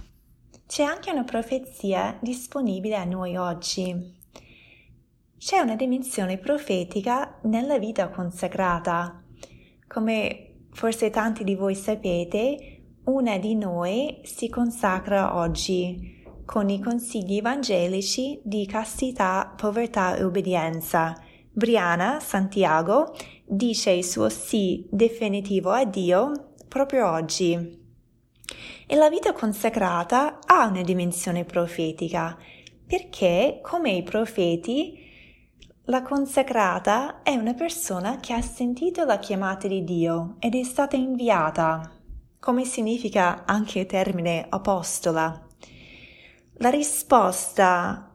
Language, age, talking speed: Italian, 20-39, 105 wpm